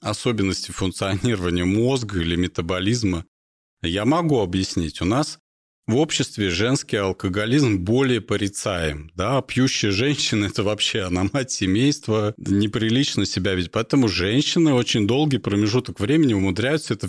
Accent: native